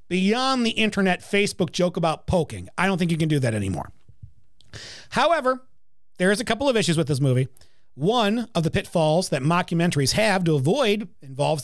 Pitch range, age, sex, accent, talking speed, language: 165-235 Hz, 40-59, male, American, 180 wpm, English